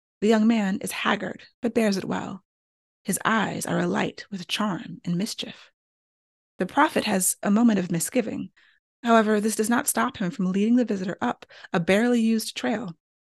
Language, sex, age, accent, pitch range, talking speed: English, female, 30-49, American, 180-225 Hz, 175 wpm